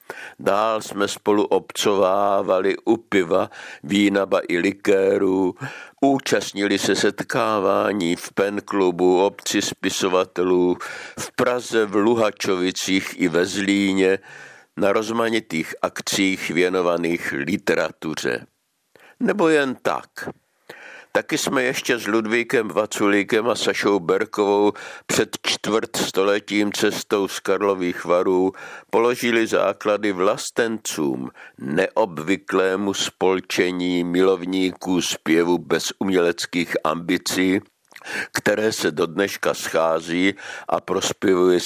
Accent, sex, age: native, male, 60-79